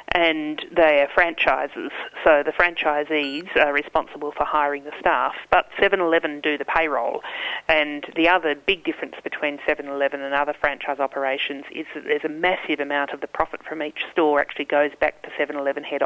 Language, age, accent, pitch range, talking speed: English, 30-49, Australian, 145-175 Hz, 175 wpm